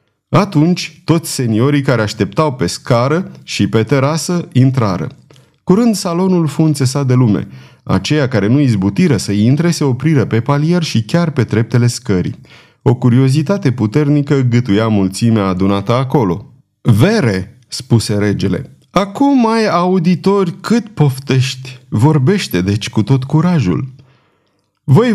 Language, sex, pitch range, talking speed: Romanian, male, 115-160 Hz, 125 wpm